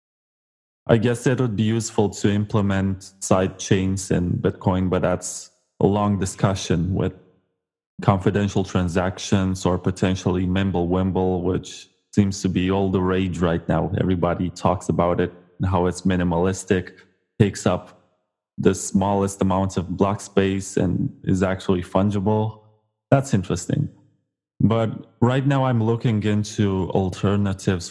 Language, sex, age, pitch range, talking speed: English, male, 20-39, 90-110 Hz, 130 wpm